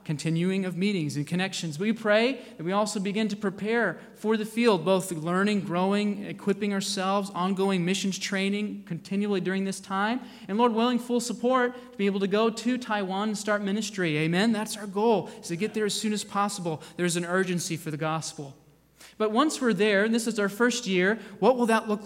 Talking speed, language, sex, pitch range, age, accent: 205 wpm, English, male, 175-215 Hz, 20-39, American